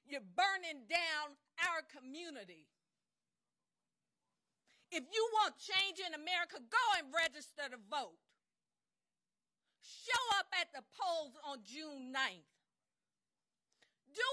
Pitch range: 285-355 Hz